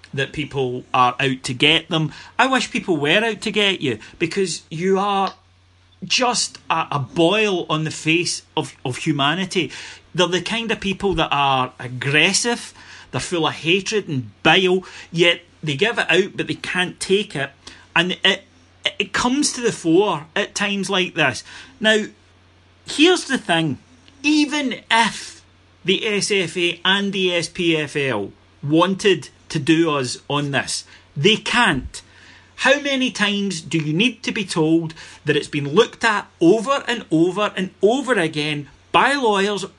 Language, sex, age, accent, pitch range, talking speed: English, male, 40-59, British, 150-205 Hz, 160 wpm